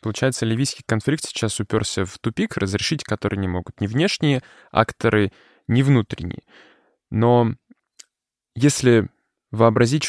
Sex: male